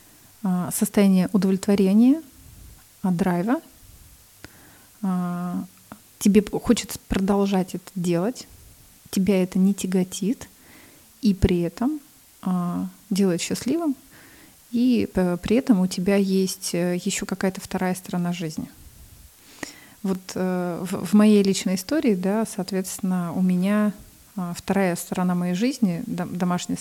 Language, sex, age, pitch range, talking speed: Russian, female, 30-49, 180-205 Hz, 95 wpm